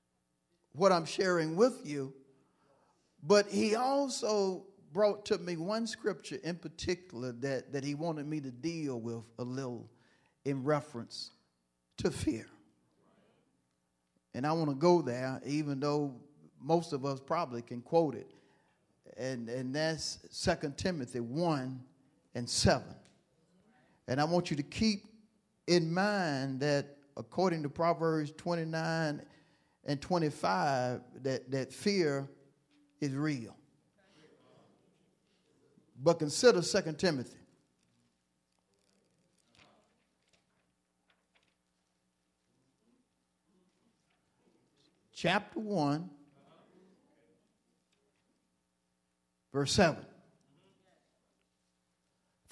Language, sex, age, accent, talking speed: English, male, 40-59, American, 90 wpm